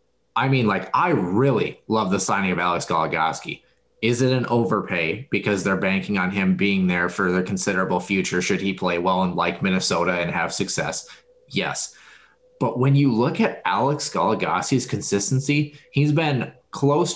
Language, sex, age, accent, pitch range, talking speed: English, male, 20-39, American, 100-140 Hz, 170 wpm